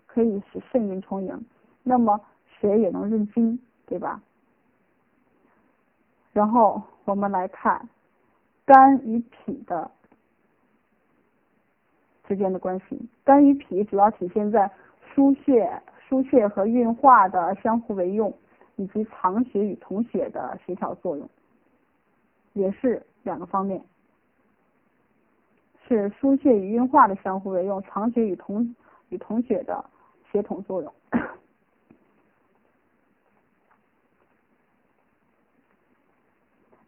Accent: native